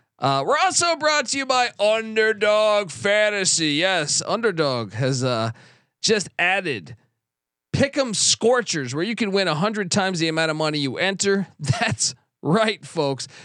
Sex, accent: male, American